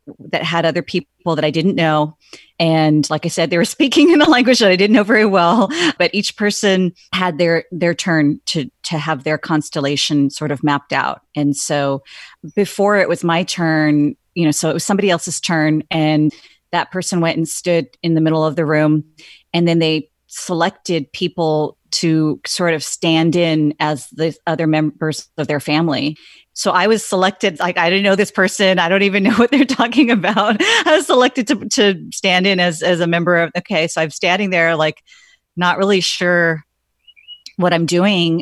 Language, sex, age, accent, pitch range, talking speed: English, female, 30-49, American, 155-185 Hz, 195 wpm